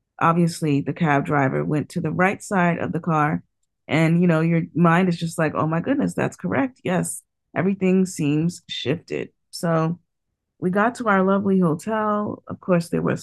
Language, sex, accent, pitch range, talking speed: English, female, American, 145-185 Hz, 180 wpm